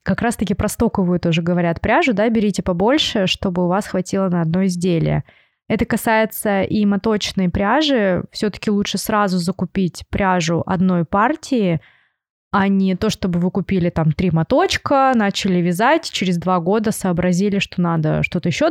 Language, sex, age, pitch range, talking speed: Russian, female, 20-39, 170-210 Hz, 150 wpm